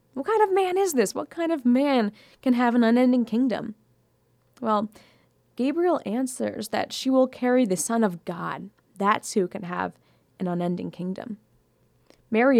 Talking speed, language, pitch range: 160 wpm, English, 190-255 Hz